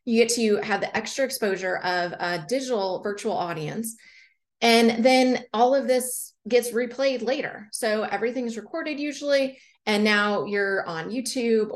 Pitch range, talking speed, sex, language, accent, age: 195-245 Hz, 155 wpm, female, English, American, 30-49